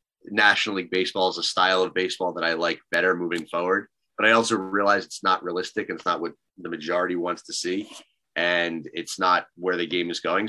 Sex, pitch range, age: male, 85-110 Hz, 30-49